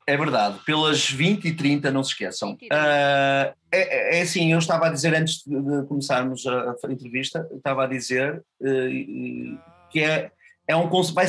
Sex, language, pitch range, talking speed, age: male, Portuguese, 130-160 Hz, 170 wpm, 30-49